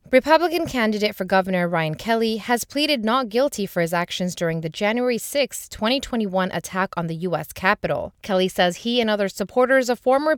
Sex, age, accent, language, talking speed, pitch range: female, 30-49, American, English, 180 wpm, 185-250 Hz